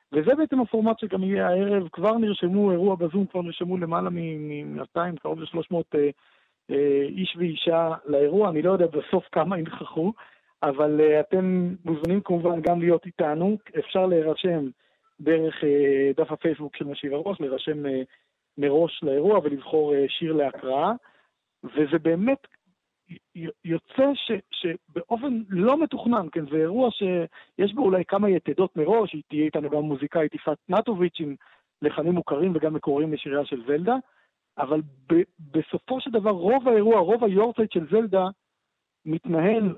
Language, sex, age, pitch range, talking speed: Hebrew, male, 50-69, 155-200 Hz, 150 wpm